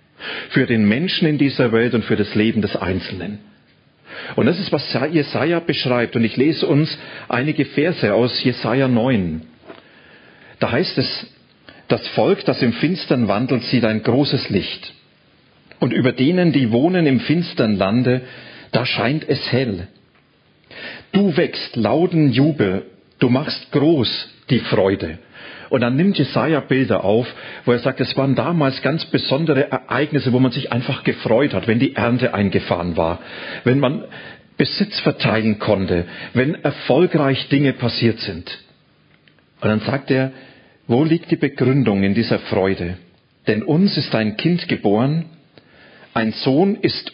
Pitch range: 115-145 Hz